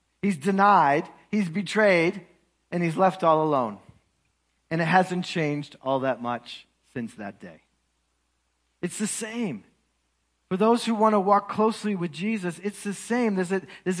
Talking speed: 160 wpm